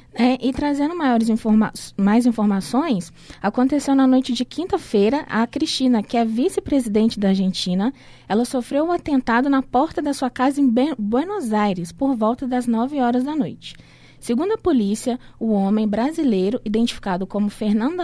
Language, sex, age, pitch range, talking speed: Portuguese, female, 20-39, 220-275 Hz, 145 wpm